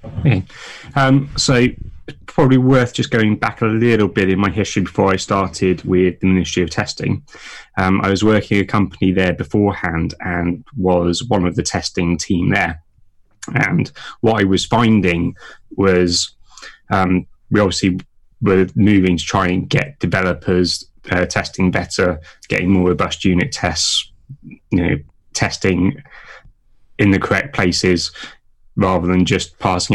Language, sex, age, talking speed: English, male, 20-39, 145 wpm